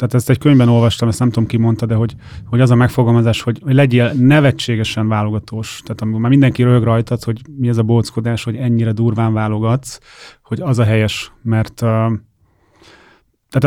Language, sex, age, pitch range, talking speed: Hungarian, male, 30-49, 110-130 Hz, 185 wpm